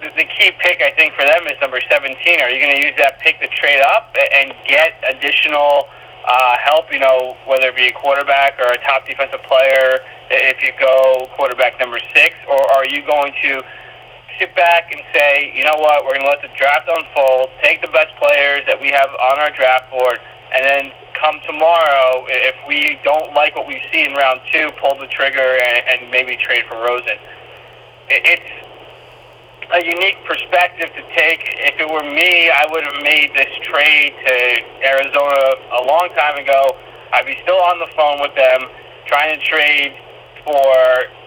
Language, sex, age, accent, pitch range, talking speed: English, male, 20-39, American, 130-155 Hz, 190 wpm